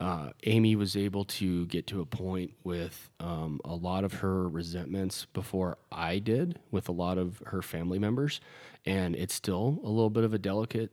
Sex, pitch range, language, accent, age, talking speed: male, 90-105 Hz, English, American, 20-39, 190 wpm